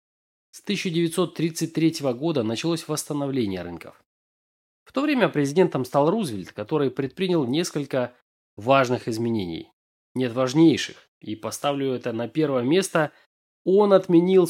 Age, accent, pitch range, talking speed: 20-39, native, 120-165 Hz, 110 wpm